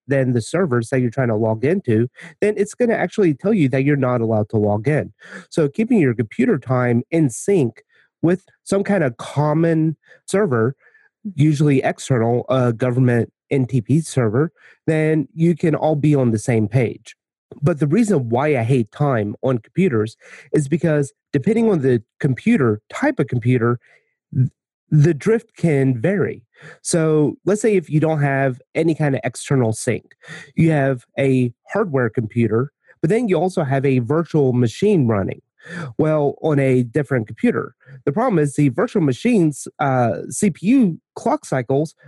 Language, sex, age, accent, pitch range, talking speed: English, male, 30-49, American, 130-170 Hz, 160 wpm